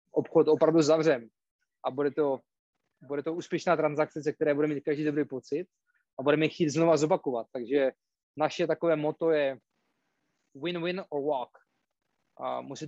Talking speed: 145 wpm